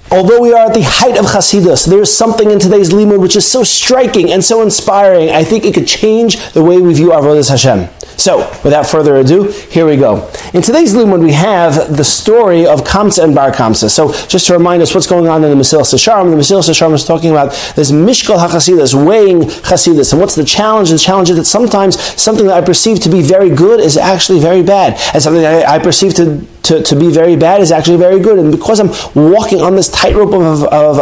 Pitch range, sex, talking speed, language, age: 150-195 Hz, male, 230 wpm, English, 30-49